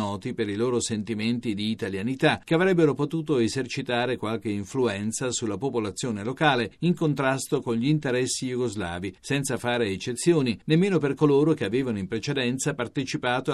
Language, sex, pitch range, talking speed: Italian, male, 115-150 Hz, 140 wpm